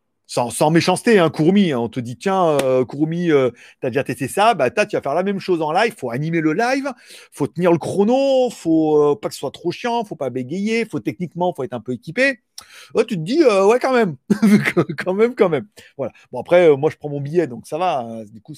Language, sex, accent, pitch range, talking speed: French, male, French, 145-205 Hz, 265 wpm